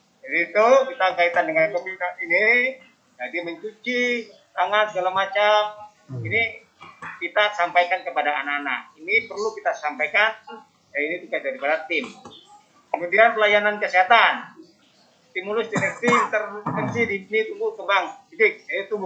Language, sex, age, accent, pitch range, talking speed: Indonesian, male, 30-49, native, 185-240 Hz, 110 wpm